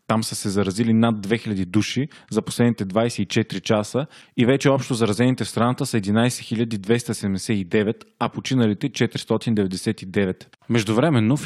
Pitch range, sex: 105-125 Hz, male